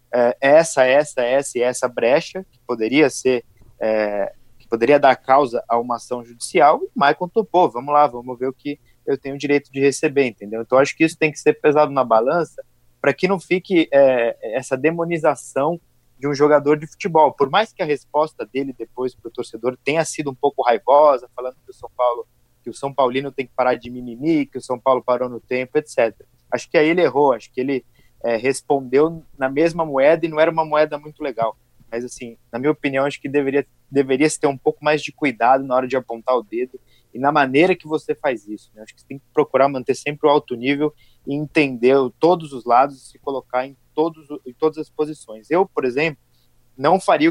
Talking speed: 215 wpm